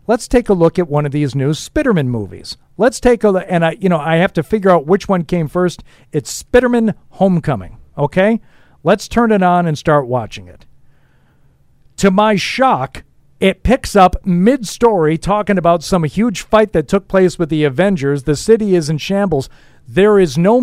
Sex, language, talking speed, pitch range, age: male, English, 200 wpm, 140-195 Hz, 50-69